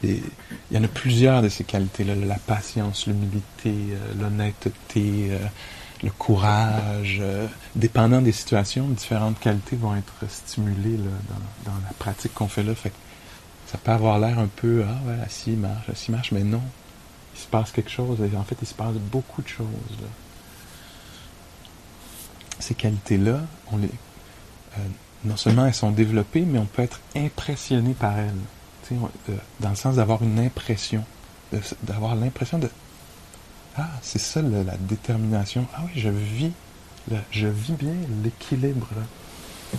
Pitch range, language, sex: 105-120 Hz, English, male